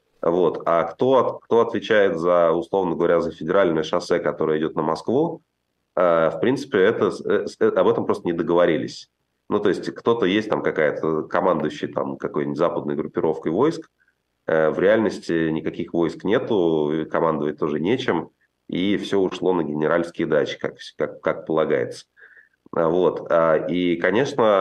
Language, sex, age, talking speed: Russian, male, 30-49, 125 wpm